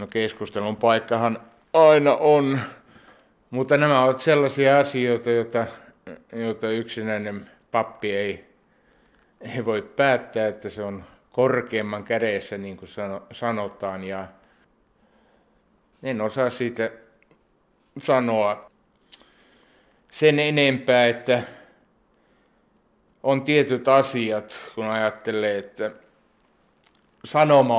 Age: 60-79